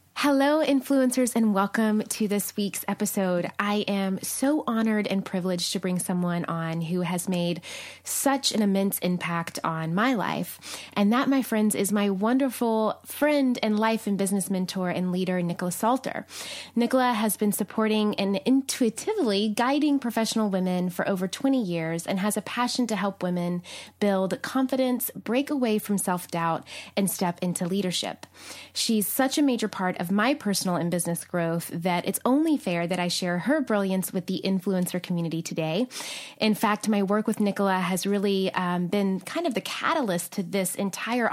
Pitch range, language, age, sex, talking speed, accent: 185-230 Hz, English, 20-39, female, 170 wpm, American